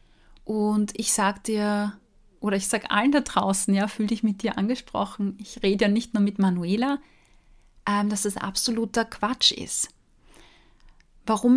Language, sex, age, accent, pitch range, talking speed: German, female, 30-49, German, 210-245 Hz, 155 wpm